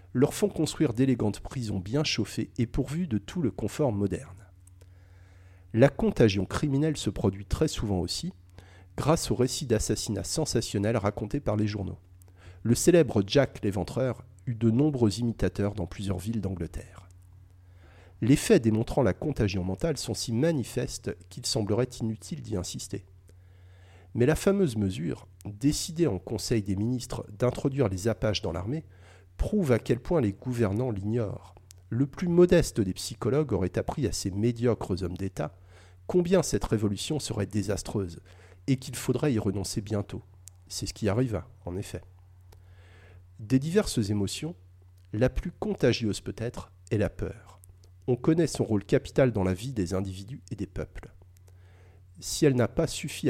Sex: male